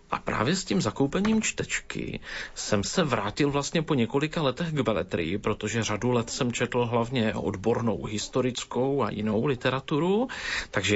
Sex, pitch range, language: male, 110-135 Hz, Slovak